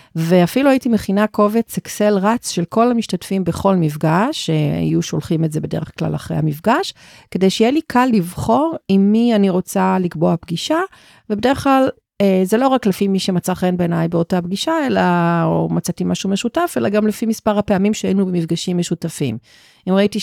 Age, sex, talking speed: 40-59, female, 170 wpm